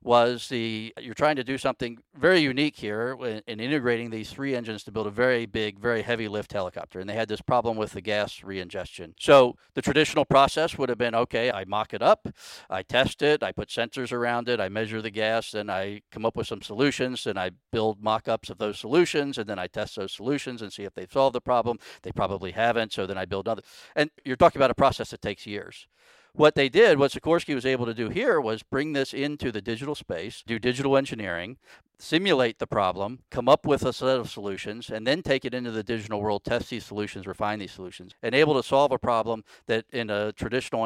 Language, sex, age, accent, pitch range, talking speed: English, male, 50-69, American, 105-130 Hz, 230 wpm